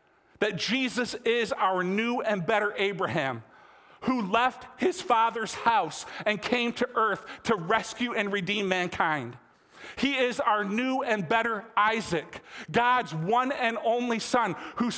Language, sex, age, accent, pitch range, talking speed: English, male, 40-59, American, 195-245 Hz, 140 wpm